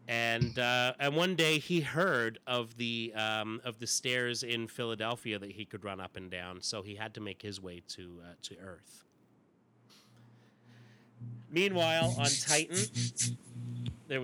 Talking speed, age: 155 wpm, 30-49